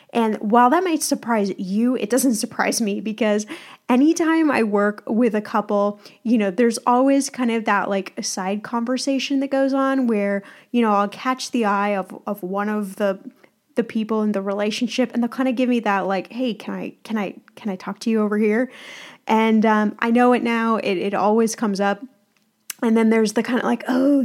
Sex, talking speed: female, 215 wpm